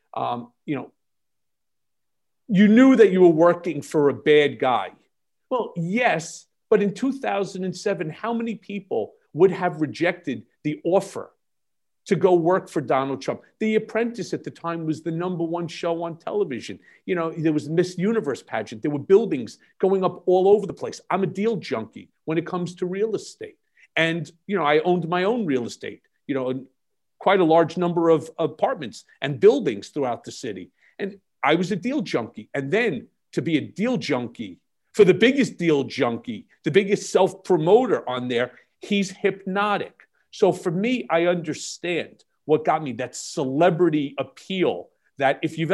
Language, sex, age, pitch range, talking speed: English, male, 50-69, 160-200 Hz, 175 wpm